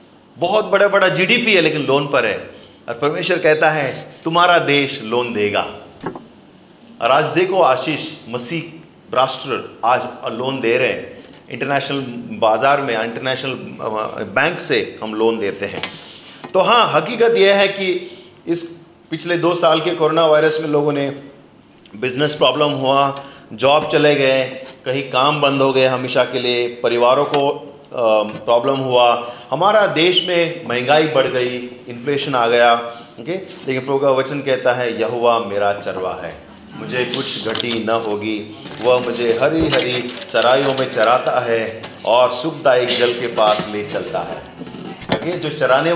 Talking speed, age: 150 wpm, 30-49